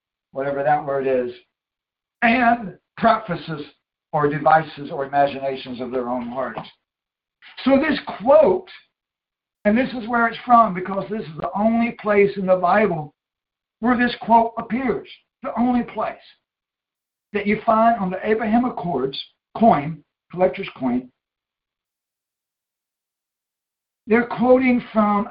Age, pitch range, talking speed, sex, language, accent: 60-79, 150-220 Hz, 125 wpm, male, English, American